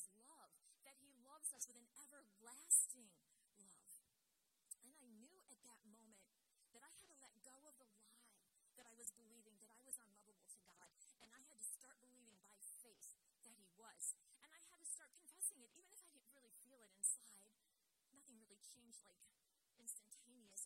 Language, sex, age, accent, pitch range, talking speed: English, female, 30-49, American, 225-280 Hz, 190 wpm